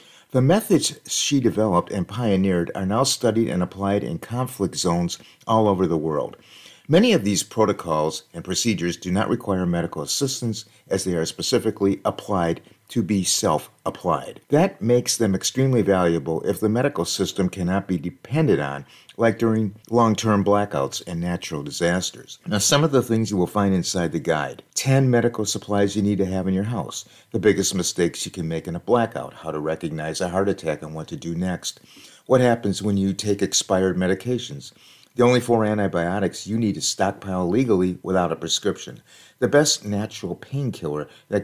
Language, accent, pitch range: English, American, 90-115 Hz